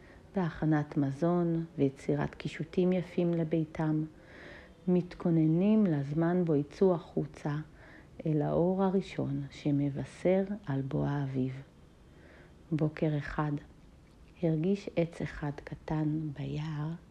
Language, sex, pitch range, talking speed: Hebrew, female, 145-175 Hz, 90 wpm